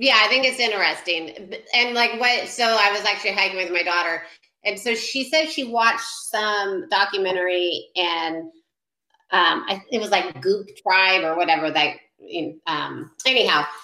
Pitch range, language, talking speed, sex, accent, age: 185-230 Hz, English, 155 wpm, female, American, 30-49